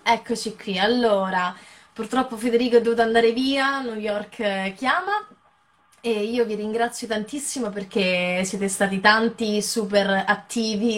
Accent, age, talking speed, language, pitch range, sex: native, 20-39, 125 wpm, Italian, 200-230 Hz, female